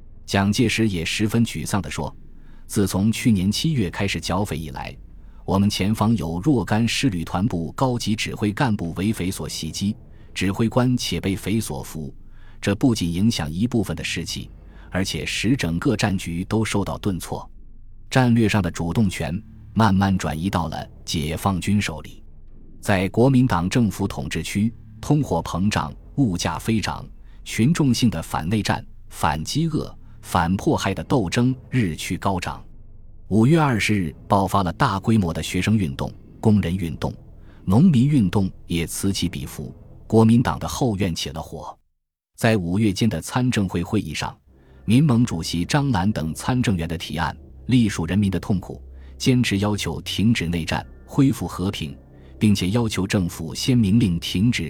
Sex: male